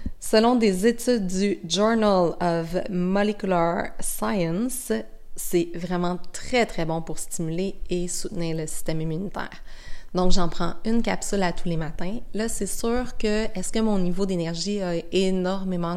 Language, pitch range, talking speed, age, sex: French, 165-200 Hz, 150 wpm, 30-49, female